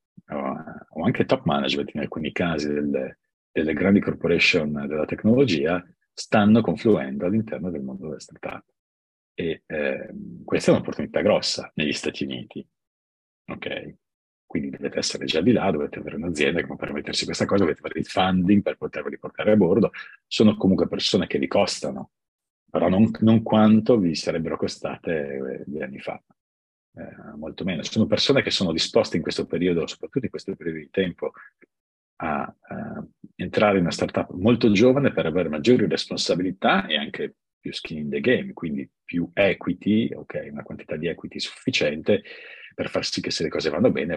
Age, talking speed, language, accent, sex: 40-59, 165 wpm, English, Italian, male